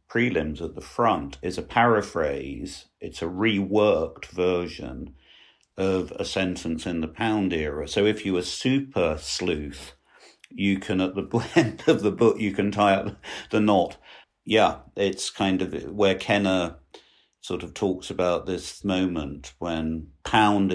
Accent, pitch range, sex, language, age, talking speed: British, 85-105 Hz, male, English, 50-69, 150 wpm